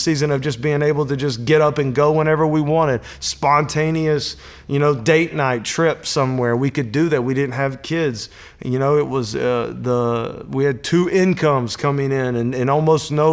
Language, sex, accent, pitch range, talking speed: English, male, American, 125-150 Hz, 205 wpm